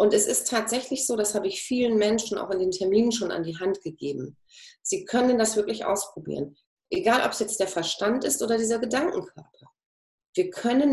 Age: 30-49